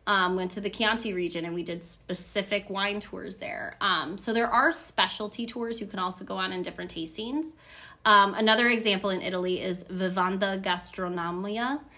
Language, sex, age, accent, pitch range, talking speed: English, female, 20-39, American, 180-220 Hz, 175 wpm